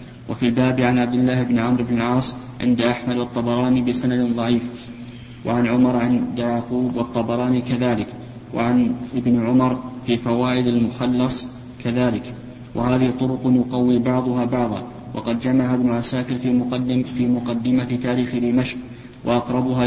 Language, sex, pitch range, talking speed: Arabic, male, 120-125 Hz, 125 wpm